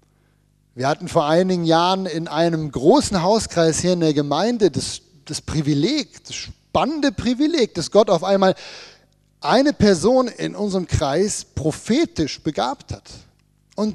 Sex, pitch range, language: male, 155-220 Hz, German